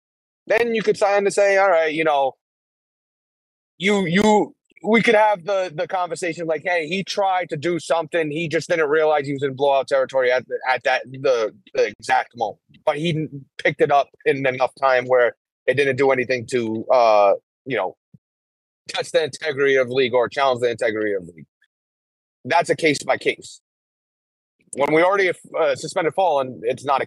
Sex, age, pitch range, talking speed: male, 30-49, 130-175 Hz, 195 wpm